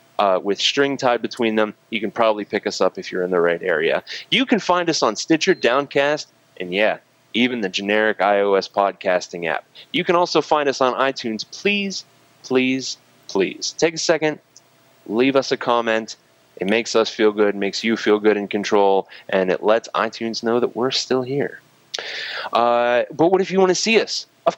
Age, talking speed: 20-39, 195 wpm